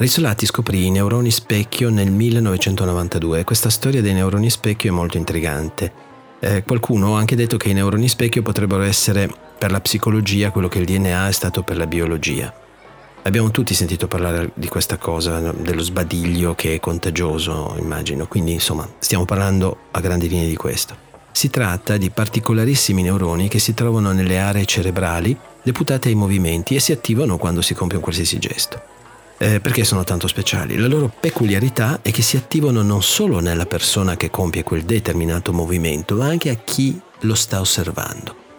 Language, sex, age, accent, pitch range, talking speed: Italian, male, 40-59, native, 90-120 Hz, 175 wpm